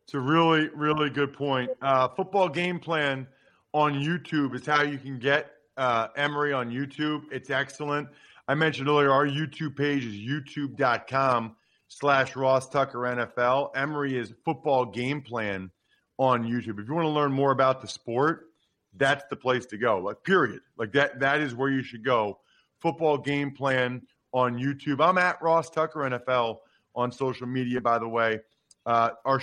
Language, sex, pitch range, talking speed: English, male, 120-150 Hz, 170 wpm